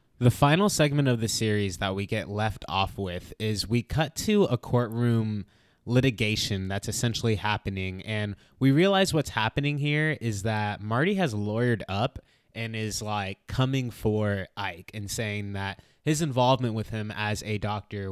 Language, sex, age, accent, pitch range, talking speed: English, male, 20-39, American, 105-145 Hz, 165 wpm